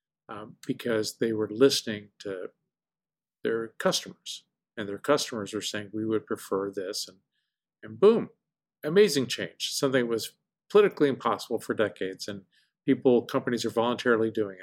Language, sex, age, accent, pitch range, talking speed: English, male, 50-69, American, 110-135 Hz, 145 wpm